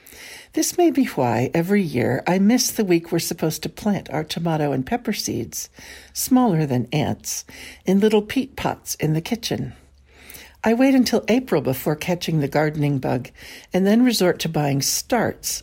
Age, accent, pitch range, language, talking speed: 60-79, American, 135-200 Hz, English, 170 wpm